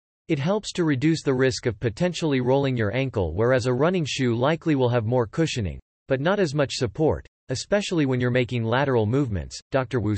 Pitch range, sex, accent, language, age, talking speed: 105-155 Hz, male, American, English, 40-59, 195 wpm